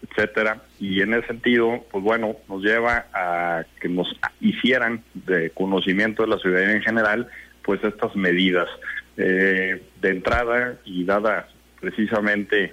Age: 50-69